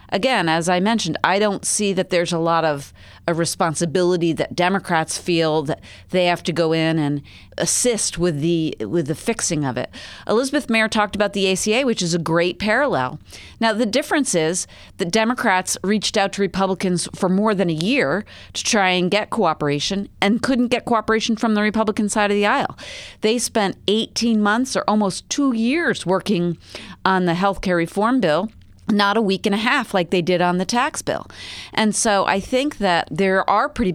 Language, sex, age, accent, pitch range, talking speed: English, female, 40-59, American, 175-220 Hz, 195 wpm